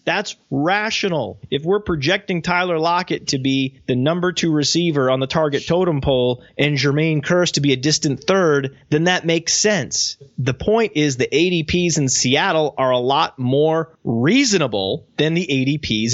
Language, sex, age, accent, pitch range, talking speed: English, male, 30-49, American, 140-185 Hz, 165 wpm